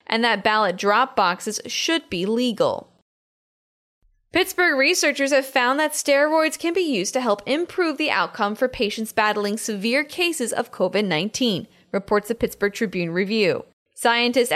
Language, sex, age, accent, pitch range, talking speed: English, female, 10-29, American, 210-260 Hz, 150 wpm